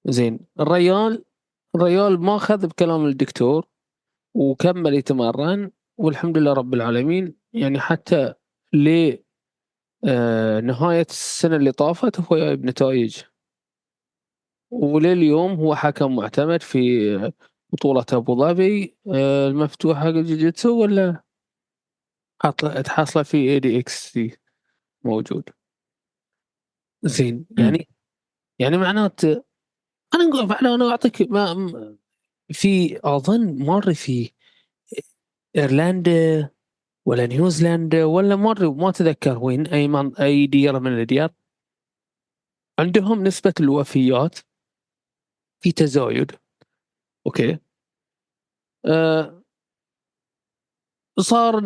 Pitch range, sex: 140-180 Hz, male